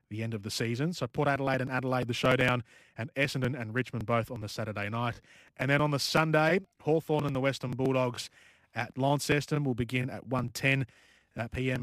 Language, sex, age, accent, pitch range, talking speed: English, male, 30-49, Australian, 110-130 Hz, 190 wpm